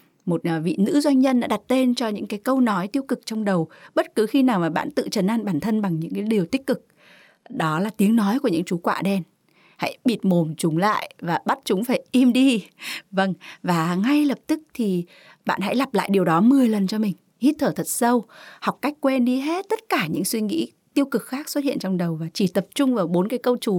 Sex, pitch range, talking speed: female, 185-255 Hz, 250 wpm